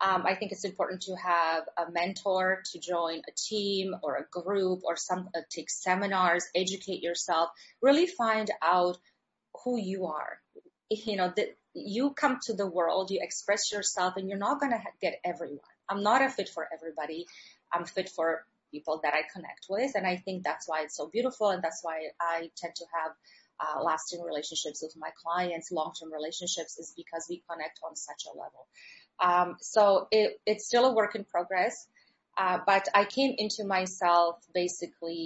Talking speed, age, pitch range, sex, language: 180 wpm, 30-49, 165-195 Hz, female, English